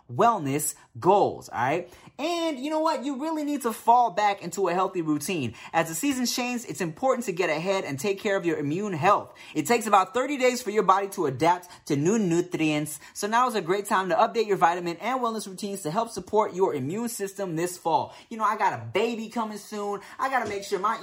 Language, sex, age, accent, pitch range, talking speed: English, male, 20-39, American, 185-240 Hz, 230 wpm